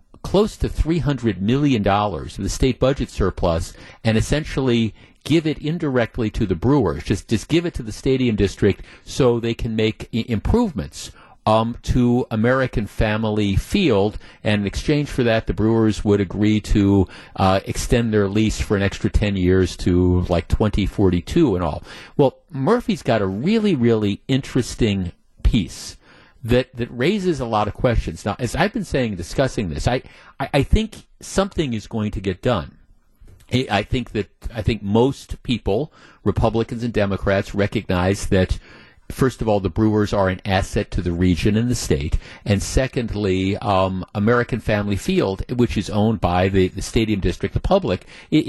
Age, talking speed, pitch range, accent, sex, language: 50-69, 165 wpm, 95-125 Hz, American, male, English